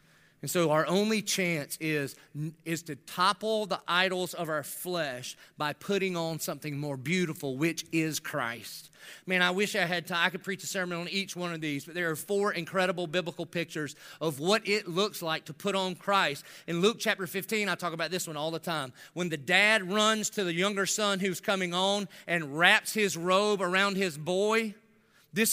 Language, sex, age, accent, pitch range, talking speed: English, male, 40-59, American, 165-215 Hz, 200 wpm